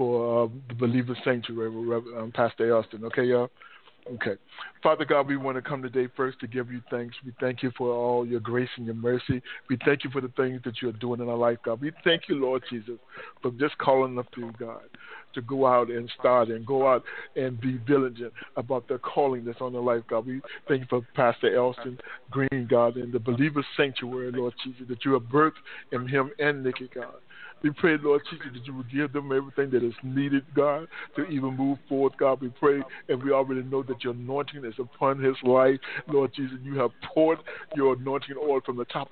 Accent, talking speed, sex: American, 220 wpm, male